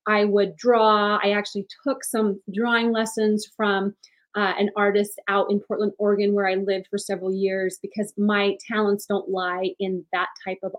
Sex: female